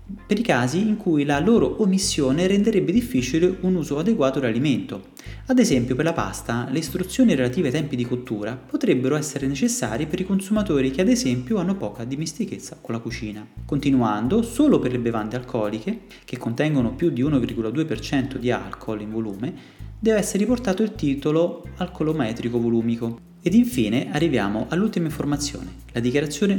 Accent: native